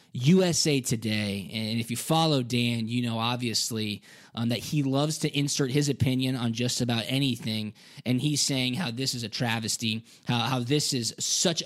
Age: 20-39